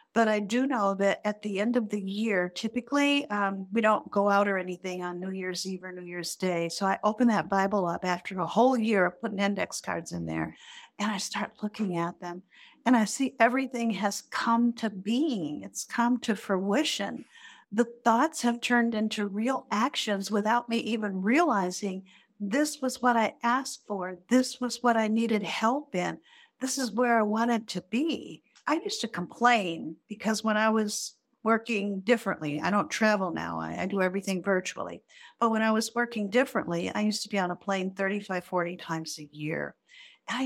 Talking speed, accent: 195 wpm, American